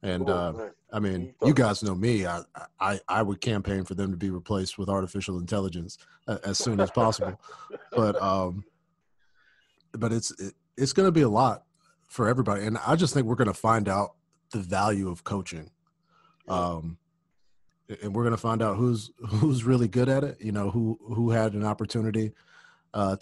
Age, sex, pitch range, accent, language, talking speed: 40-59, male, 95-125 Hz, American, English, 185 wpm